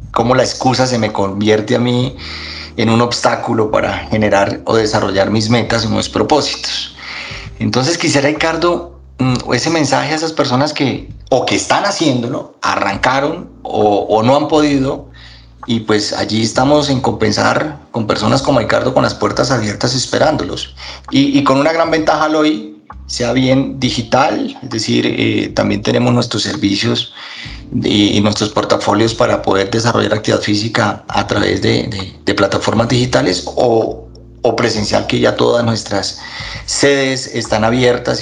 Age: 30-49